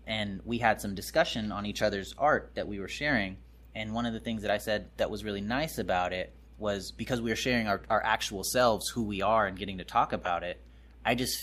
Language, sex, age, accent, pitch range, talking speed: English, male, 20-39, American, 95-120 Hz, 245 wpm